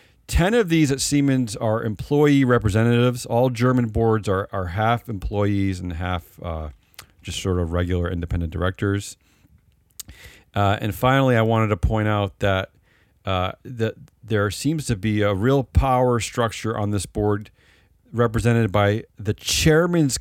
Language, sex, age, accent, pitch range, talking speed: English, male, 40-59, American, 95-120 Hz, 150 wpm